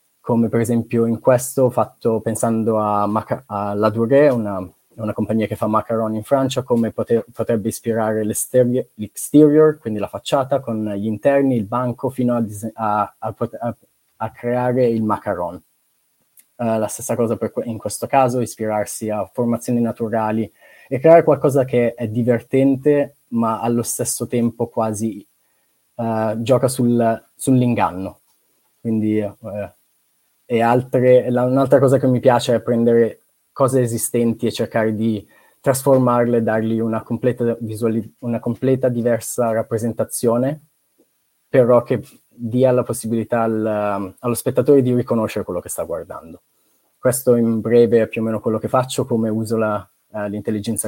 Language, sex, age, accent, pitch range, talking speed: Italian, male, 20-39, native, 110-125 Hz, 150 wpm